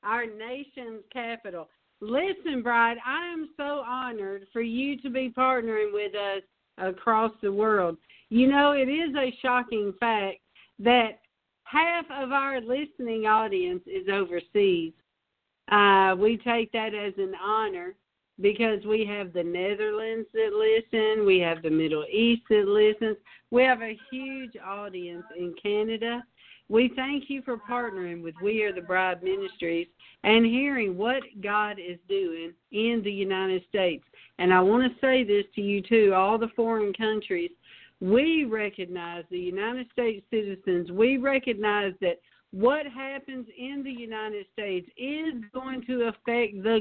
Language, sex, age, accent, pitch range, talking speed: English, female, 50-69, American, 195-245 Hz, 150 wpm